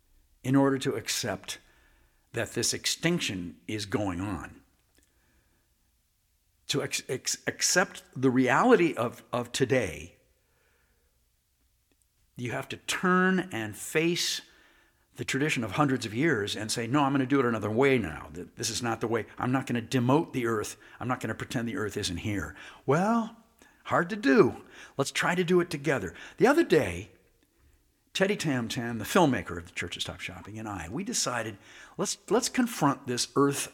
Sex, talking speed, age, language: male, 160 wpm, 60-79, English